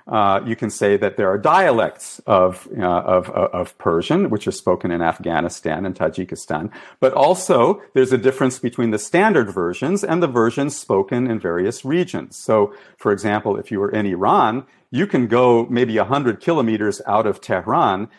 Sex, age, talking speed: male, 50-69, 175 wpm